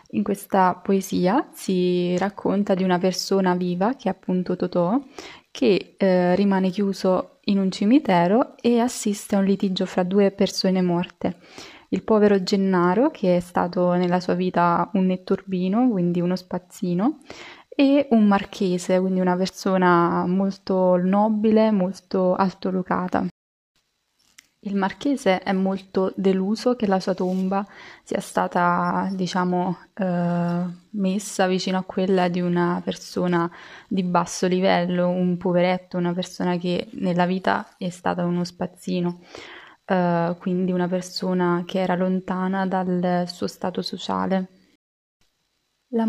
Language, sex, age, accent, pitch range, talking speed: Italian, female, 20-39, native, 180-200 Hz, 130 wpm